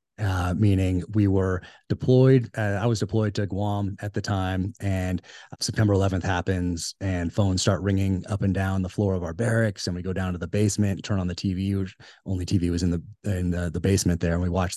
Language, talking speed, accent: English, 230 wpm, American